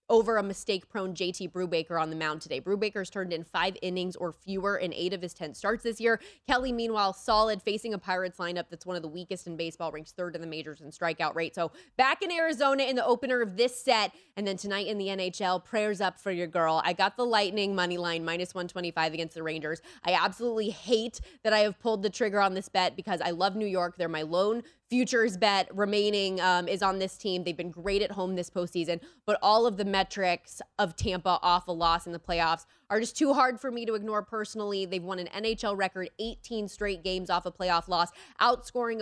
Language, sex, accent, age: English, female, American, 20-39